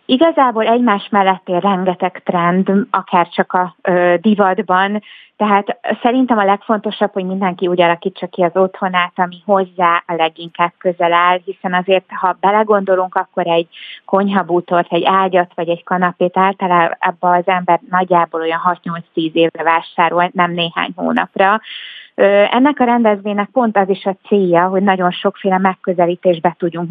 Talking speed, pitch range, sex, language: 145 wpm, 175-195 Hz, female, Hungarian